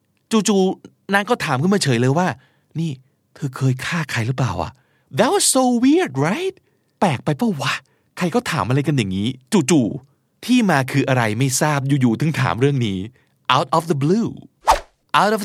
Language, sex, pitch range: Thai, male, 125-180 Hz